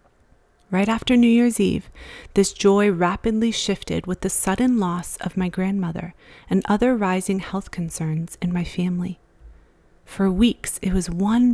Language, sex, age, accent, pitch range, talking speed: English, female, 30-49, American, 180-200 Hz, 150 wpm